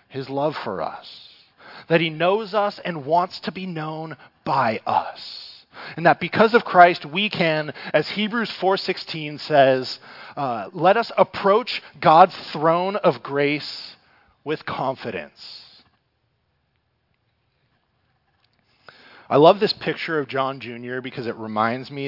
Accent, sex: American, male